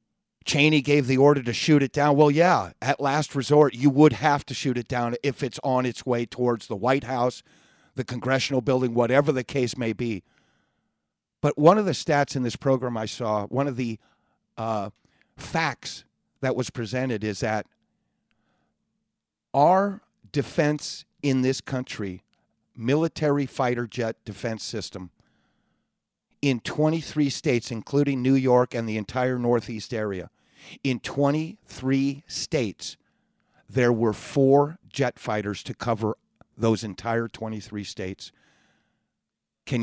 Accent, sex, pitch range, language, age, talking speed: American, male, 115-140 Hz, English, 50-69, 140 wpm